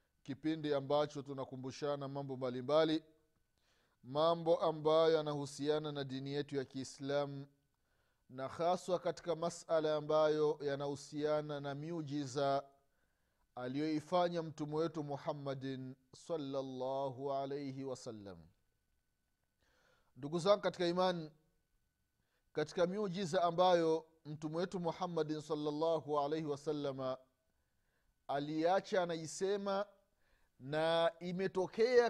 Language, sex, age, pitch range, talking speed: Swahili, male, 30-49, 140-175 Hz, 80 wpm